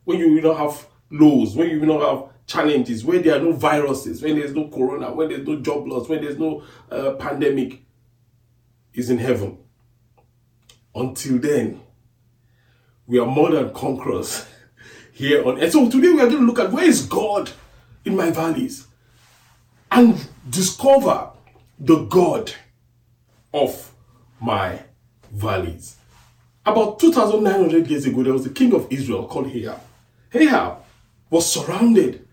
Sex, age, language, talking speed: male, 40-59, English, 150 wpm